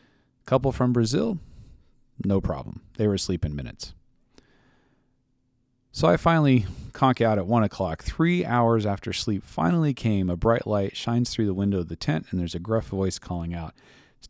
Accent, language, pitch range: American, English, 90-120 Hz